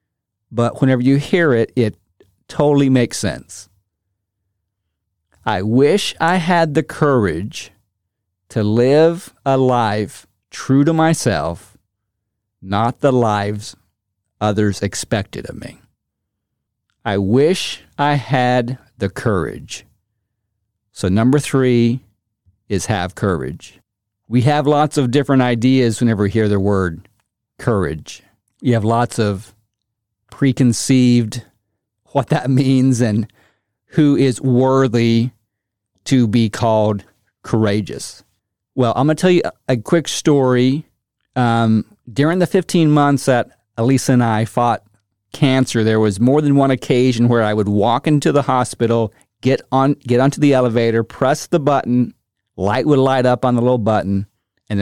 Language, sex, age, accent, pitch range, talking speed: English, male, 50-69, American, 105-135 Hz, 130 wpm